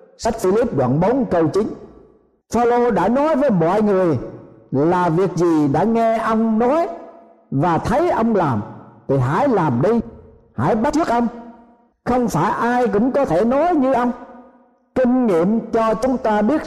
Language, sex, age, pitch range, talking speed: Vietnamese, male, 50-69, 170-260 Hz, 165 wpm